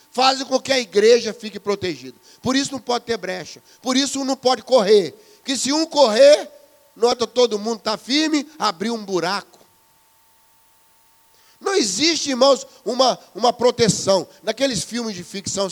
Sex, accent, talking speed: male, Brazilian, 155 wpm